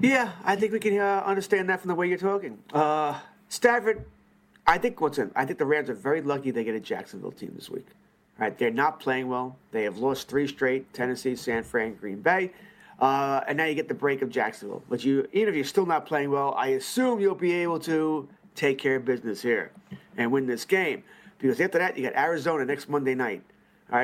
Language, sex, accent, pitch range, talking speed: English, male, American, 140-200 Hz, 225 wpm